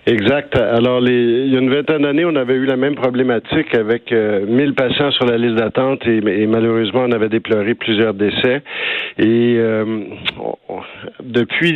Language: French